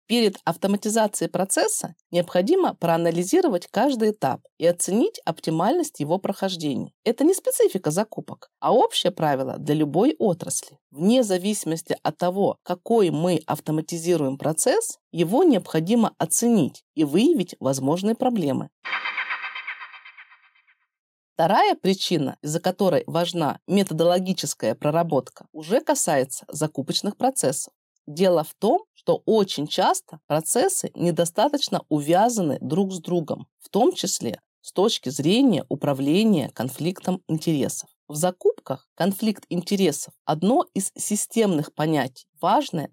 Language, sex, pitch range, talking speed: Russian, female, 155-230 Hz, 110 wpm